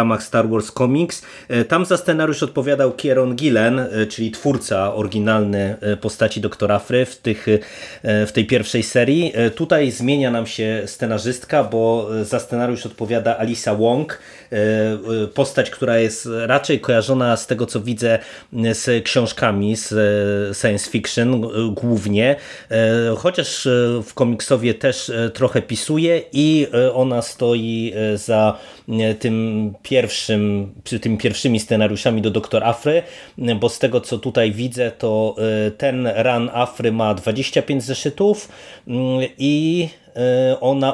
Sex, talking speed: male, 115 wpm